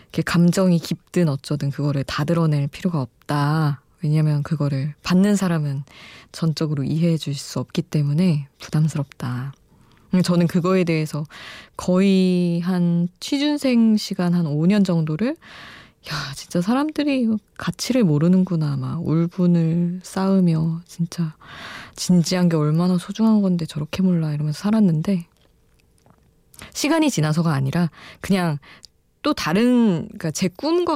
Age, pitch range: 20-39, 155-195 Hz